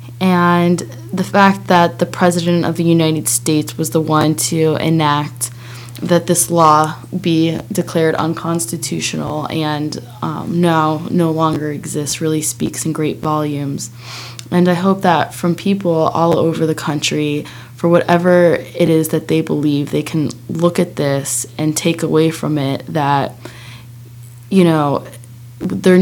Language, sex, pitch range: English, female, 145-175 Hz